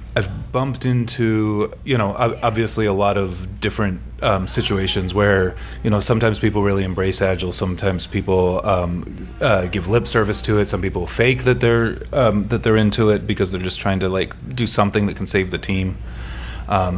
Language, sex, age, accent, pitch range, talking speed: English, male, 30-49, American, 95-115 Hz, 185 wpm